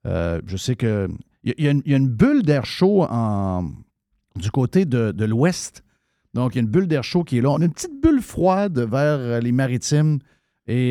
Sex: male